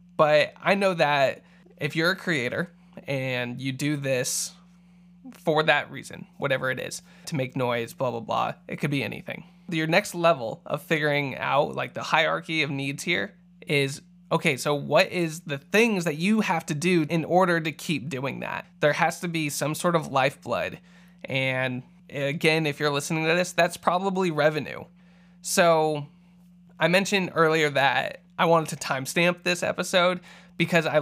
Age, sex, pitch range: 20-39, male, 150-180 Hz